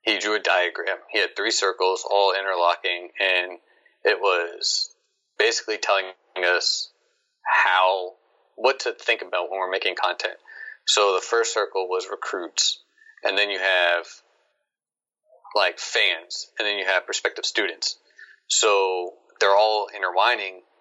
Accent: American